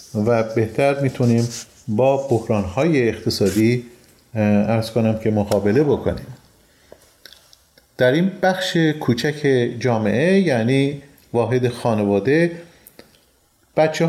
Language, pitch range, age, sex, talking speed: Persian, 120-155 Hz, 40-59, male, 90 wpm